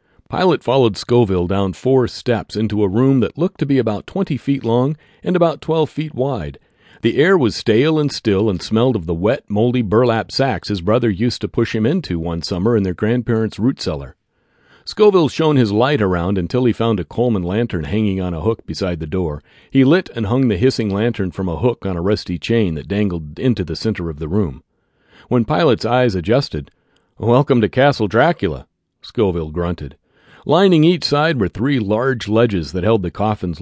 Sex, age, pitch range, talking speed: male, 40-59, 90-130 Hz, 200 wpm